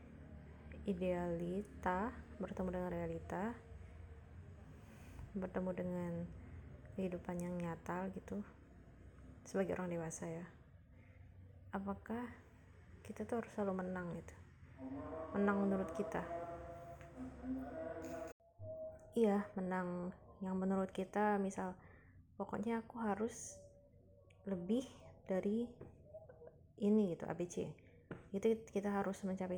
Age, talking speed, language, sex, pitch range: 20-39, 85 wpm, Indonesian, female, 165-200 Hz